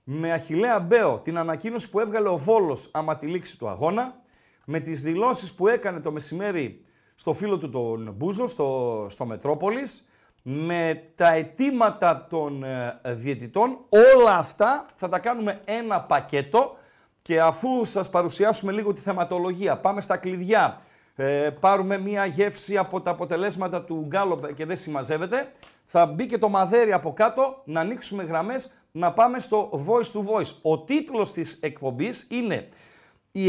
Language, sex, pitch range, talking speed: Greek, male, 160-220 Hz, 145 wpm